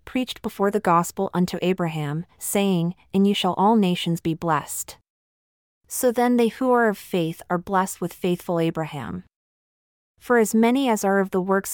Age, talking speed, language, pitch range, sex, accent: 30-49, 175 wpm, English, 175-205 Hz, female, American